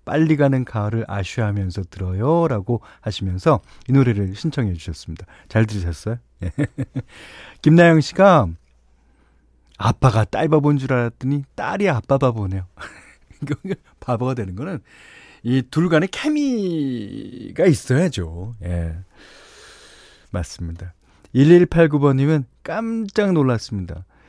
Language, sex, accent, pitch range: Korean, male, native, 100-160 Hz